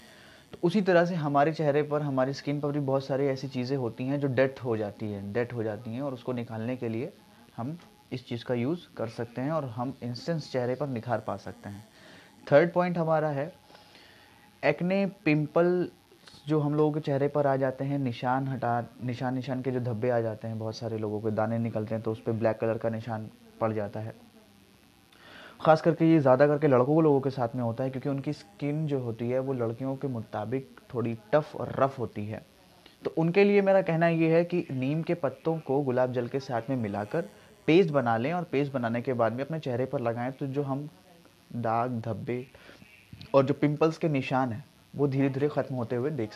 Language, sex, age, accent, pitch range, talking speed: Hindi, male, 20-39, native, 115-150 Hz, 215 wpm